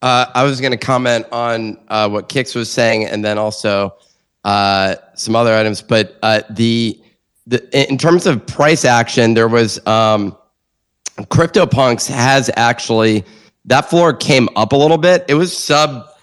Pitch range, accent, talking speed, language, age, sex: 105-125 Hz, American, 160 wpm, English, 30-49, male